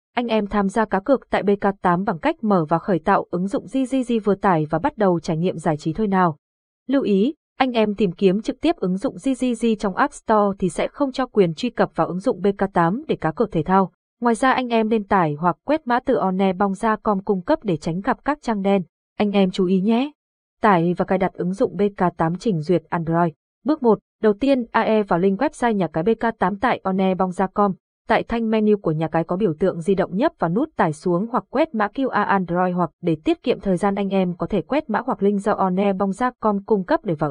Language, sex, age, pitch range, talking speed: Vietnamese, female, 20-39, 180-230 Hz, 240 wpm